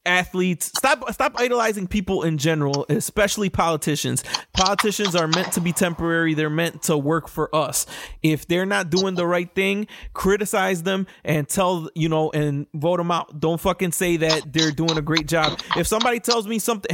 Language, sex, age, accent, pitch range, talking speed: English, male, 20-39, American, 155-200 Hz, 185 wpm